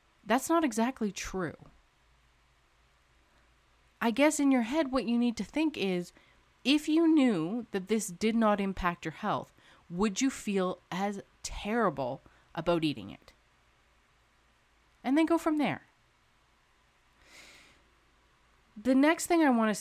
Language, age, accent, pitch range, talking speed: English, 30-49, American, 155-240 Hz, 135 wpm